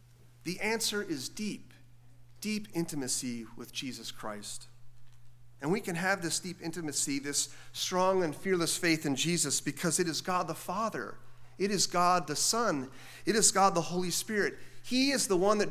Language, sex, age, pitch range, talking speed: English, male, 40-59, 120-180 Hz, 170 wpm